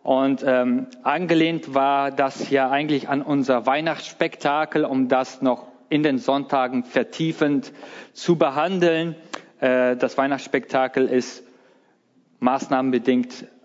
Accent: German